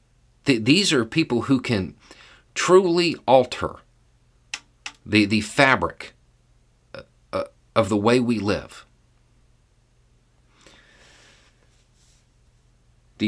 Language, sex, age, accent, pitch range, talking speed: English, male, 40-59, American, 95-130 Hz, 70 wpm